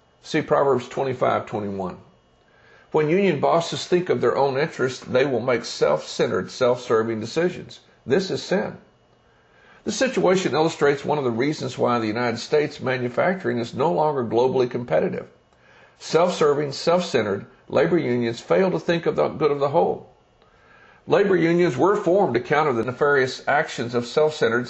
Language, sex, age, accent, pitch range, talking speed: English, male, 60-79, American, 125-180 Hz, 165 wpm